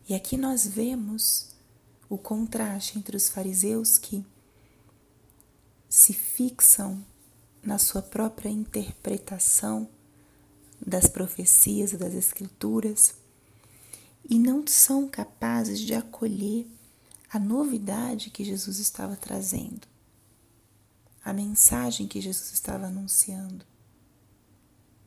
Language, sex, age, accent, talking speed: Portuguese, female, 30-49, Brazilian, 90 wpm